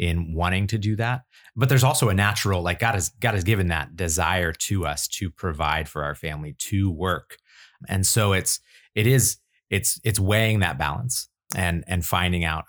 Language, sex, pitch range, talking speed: English, male, 85-110 Hz, 195 wpm